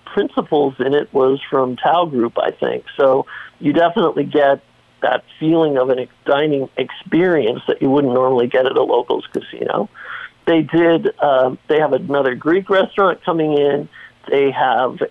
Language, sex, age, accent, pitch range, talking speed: English, male, 50-69, American, 140-180 Hz, 165 wpm